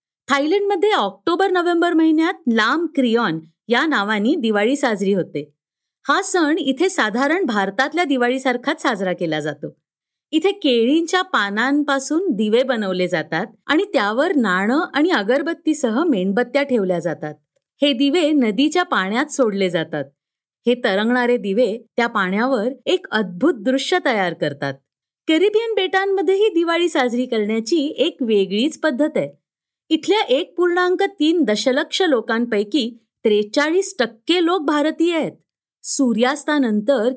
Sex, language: female, Marathi